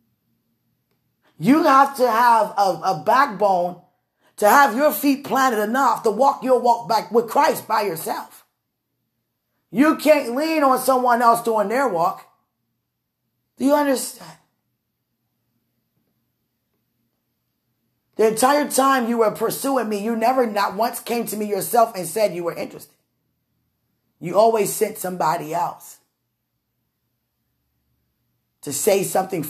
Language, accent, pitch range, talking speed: English, American, 150-225 Hz, 125 wpm